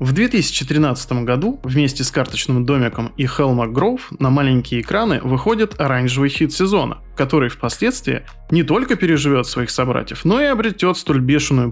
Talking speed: 150 wpm